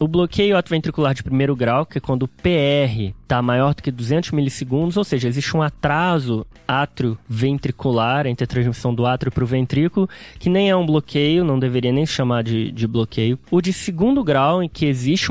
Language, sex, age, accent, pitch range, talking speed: Portuguese, male, 20-39, Brazilian, 130-175 Hz, 195 wpm